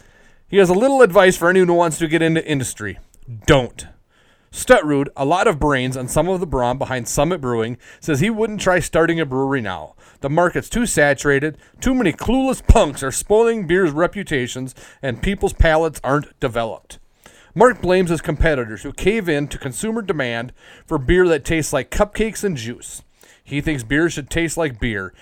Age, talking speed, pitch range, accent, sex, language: 30-49, 185 wpm, 140-230 Hz, American, male, English